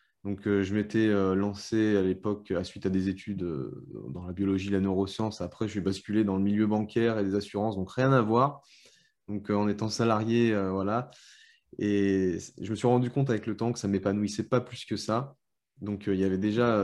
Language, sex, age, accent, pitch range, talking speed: French, male, 20-39, French, 100-115 Hz, 220 wpm